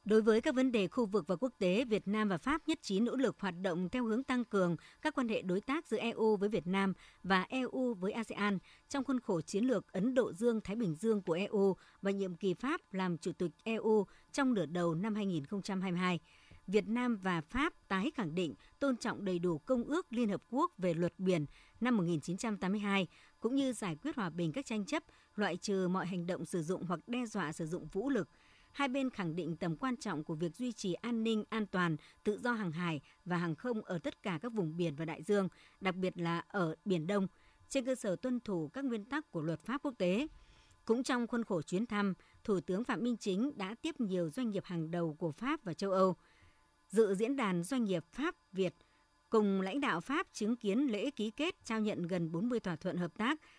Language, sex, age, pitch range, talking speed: Vietnamese, male, 60-79, 180-240 Hz, 225 wpm